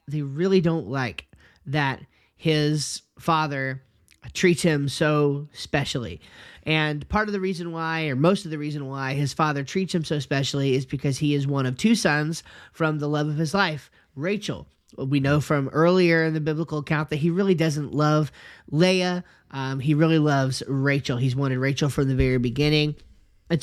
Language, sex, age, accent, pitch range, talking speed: English, male, 30-49, American, 130-160 Hz, 180 wpm